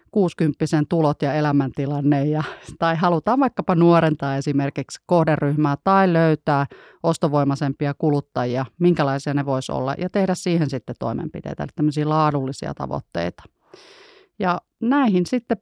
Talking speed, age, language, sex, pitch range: 110 wpm, 30-49, Finnish, female, 140-175 Hz